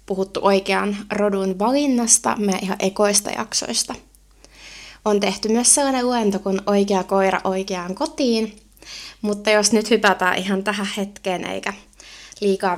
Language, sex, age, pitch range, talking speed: Finnish, female, 20-39, 195-235 Hz, 125 wpm